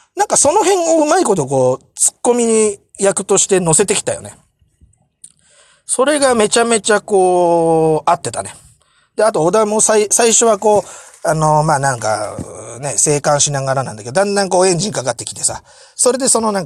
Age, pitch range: 30-49, 130-220 Hz